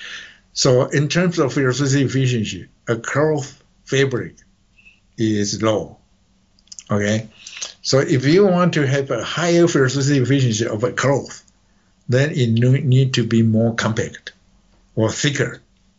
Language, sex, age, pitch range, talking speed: English, male, 60-79, 110-135 Hz, 130 wpm